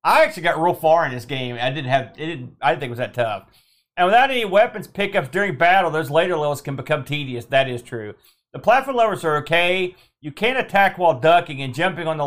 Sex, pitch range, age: male, 150-205 Hz, 40-59